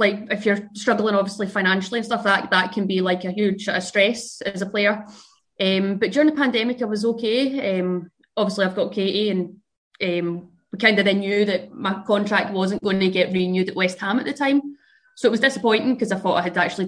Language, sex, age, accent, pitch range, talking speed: English, female, 20-39, British, 185-215 Hz, 230 wpm